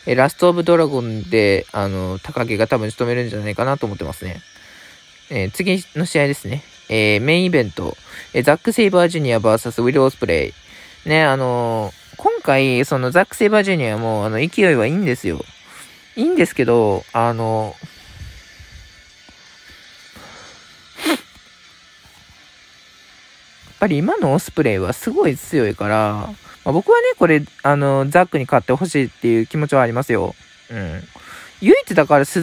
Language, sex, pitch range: Japanese, male, 110-160 Hz